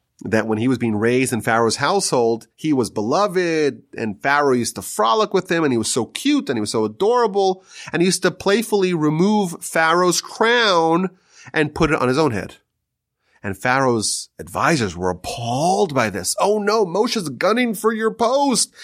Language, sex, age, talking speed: English, male, 30-49, 185 wpm